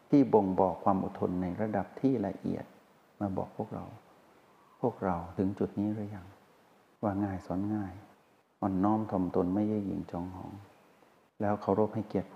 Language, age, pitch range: Thai, 60-79, 95-115 Hz